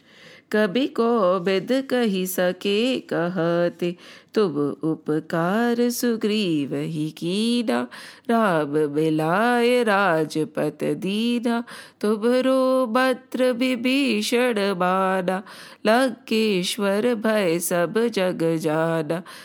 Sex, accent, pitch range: female, Indian, 175-245 Hz